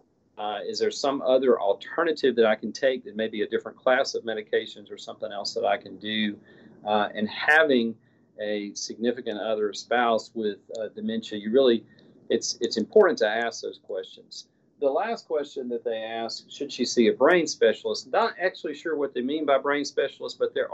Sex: male